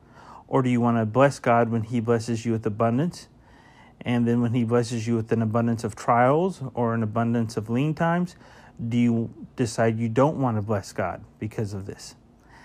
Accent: American